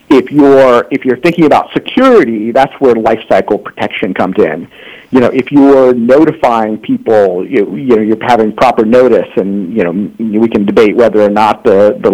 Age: 50-69